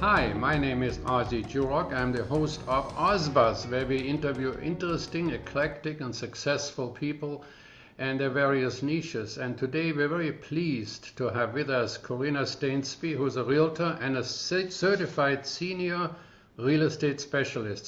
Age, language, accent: 50-69, English, German